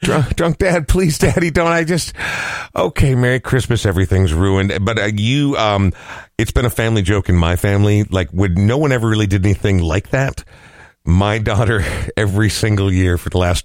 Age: 50-69